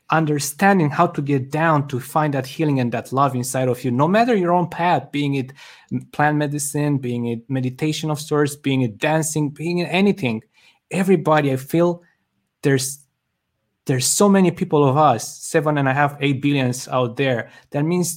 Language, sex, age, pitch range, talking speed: English, male, 20-39, 125-155 Hz, 180 wpm